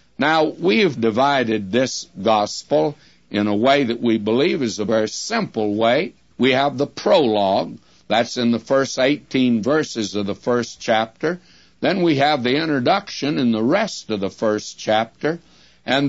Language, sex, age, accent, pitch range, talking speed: English, male, 60-79, American, 105-145 Hz, 165 wpm